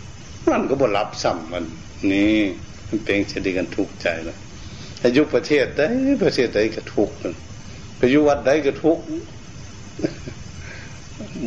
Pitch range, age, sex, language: 95-120 Hz, 70-89, male, Thai